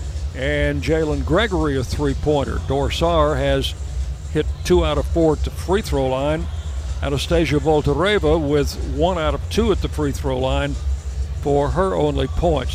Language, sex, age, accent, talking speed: English, male, 60-79, American, 145 wpm